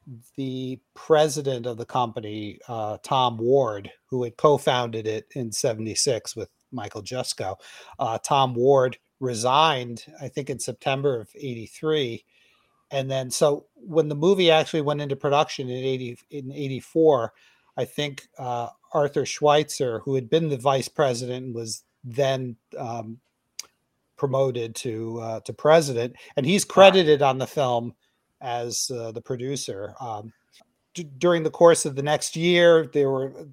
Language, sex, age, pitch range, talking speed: English, male, 40-59, 125-155 Hz, 145 wpm